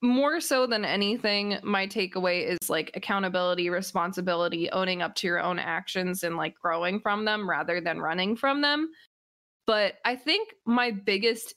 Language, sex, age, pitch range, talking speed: English, female, 20-39, 180-220 Hz, 160 wpm